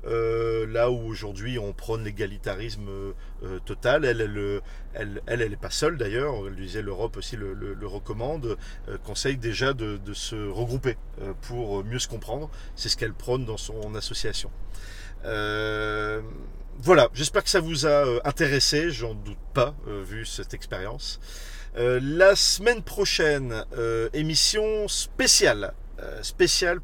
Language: French